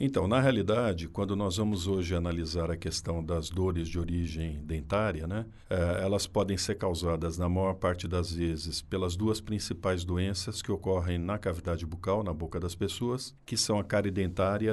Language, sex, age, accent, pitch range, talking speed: Portuguese, male, 50-69, Brazilian, 90-105 Hz, 175 wpm